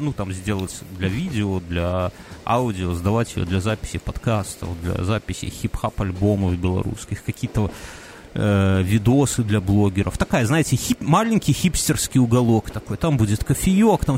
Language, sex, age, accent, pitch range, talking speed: Russian, male, 30-49, native, 105-155 Hz, 135 wpm